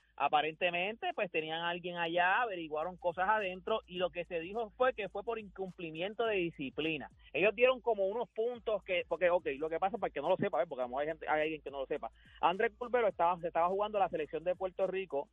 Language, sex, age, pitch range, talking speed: Spanish, male, 30-49, 165-210 Hz, 240 wpm